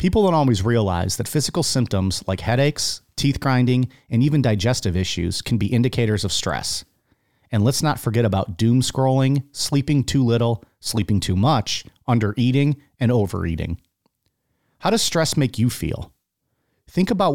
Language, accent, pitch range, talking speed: English, American, 100-130 Hz, 150 wpm